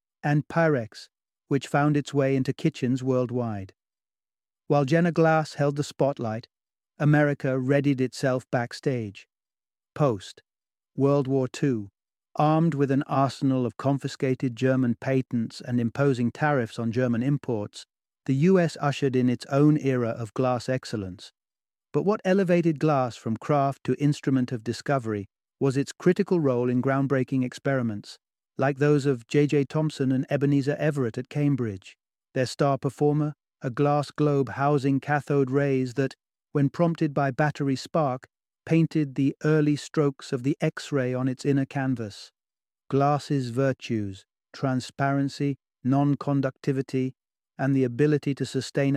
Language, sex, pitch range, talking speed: English, male, 125-145 Hz, 135 wpm